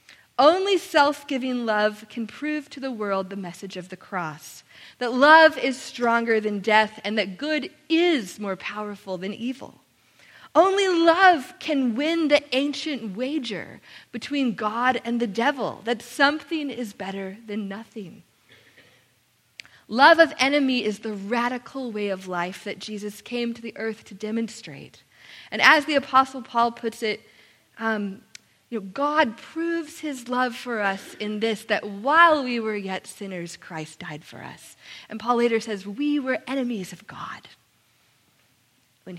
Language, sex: English, female